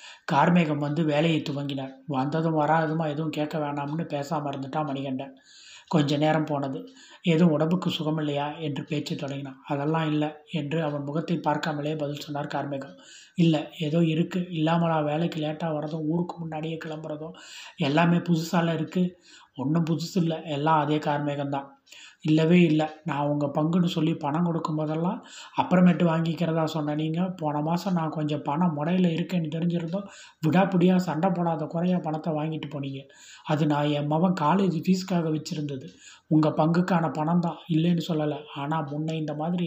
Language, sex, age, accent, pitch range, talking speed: Tamil, male, 30-49, native, 150-170 Hz, 135 wpm